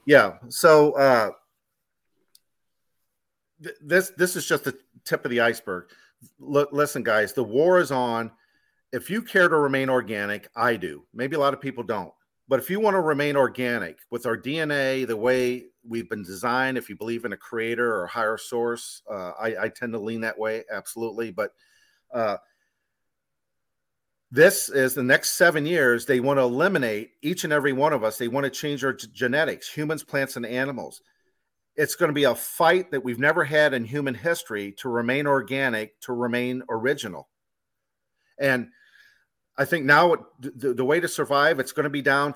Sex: male